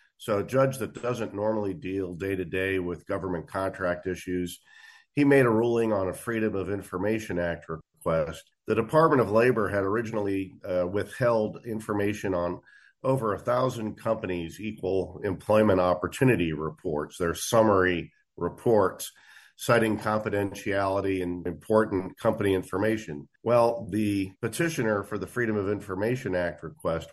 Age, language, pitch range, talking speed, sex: 50-69, English, 95-120 Hz, 130 wpm, male